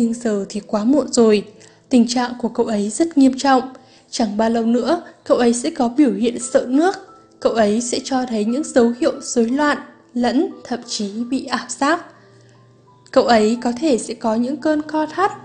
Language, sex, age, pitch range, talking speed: English, female, 10-29, 220-280 Hz, 200 wpm